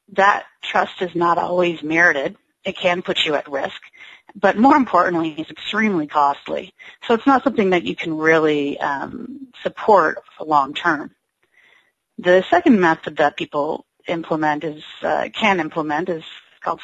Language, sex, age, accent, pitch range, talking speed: English, female, 40-59, American, 150-185 Hz, 155 wpm